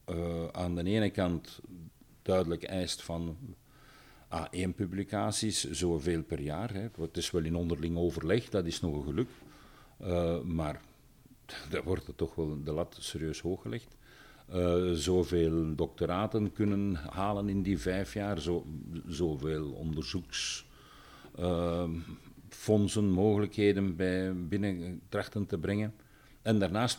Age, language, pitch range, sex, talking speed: 50-69, Dutch, 85-110 Hz, male, 115 wpm